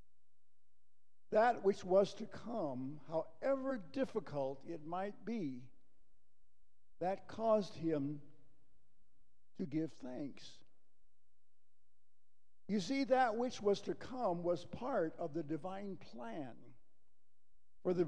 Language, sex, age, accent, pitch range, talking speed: English, male, 60-79, American, 135-190 Hz, 105 wpm